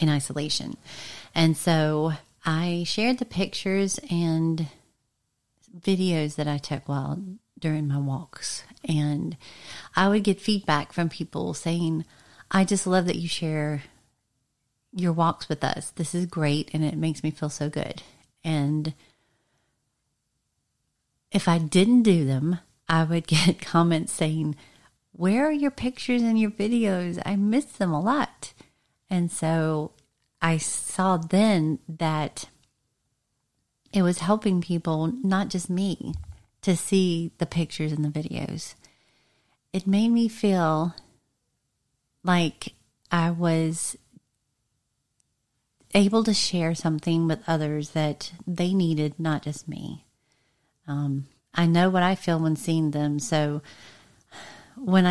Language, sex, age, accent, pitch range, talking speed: English, female, 40-59, American, 150-185 Hz, 130 wpm